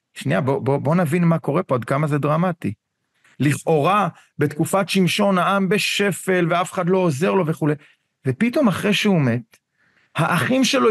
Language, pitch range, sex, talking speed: Hebrew, 160-210 Hz, male, 150 wpm